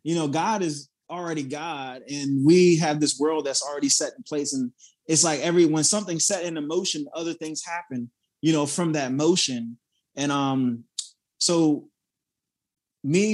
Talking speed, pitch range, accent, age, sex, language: 165 wpm, 145-180 Hz, American, 20-39, male, English